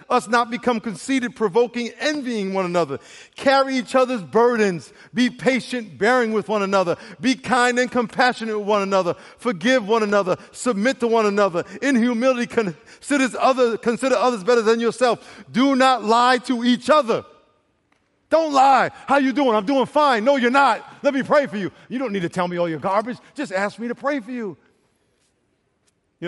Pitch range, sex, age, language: 170-250 Hz, male, 50-69, English